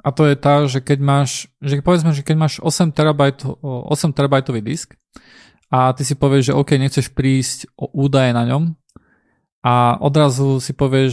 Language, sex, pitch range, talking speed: Slovak, male, 125-150 Hz, 180 wpm